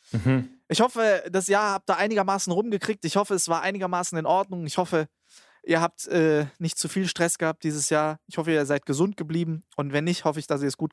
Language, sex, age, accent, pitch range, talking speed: German, male, 20-39, German, 145-185 Hz, 230 wpm